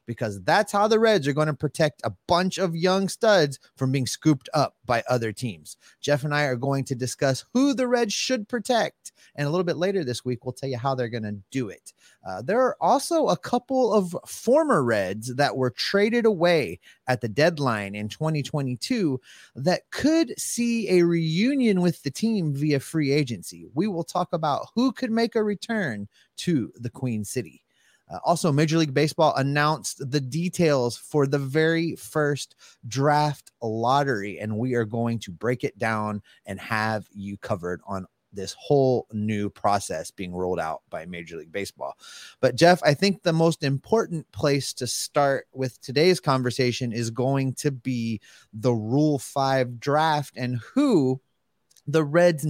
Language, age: English, 30-49